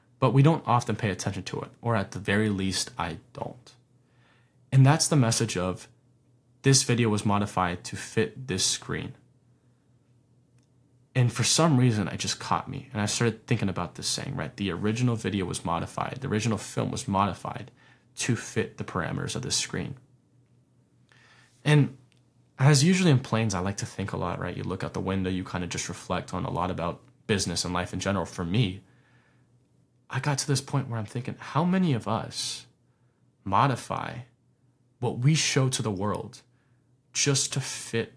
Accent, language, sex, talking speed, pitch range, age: American, English, male, 180 wpm, 110-130 Hz, 20-39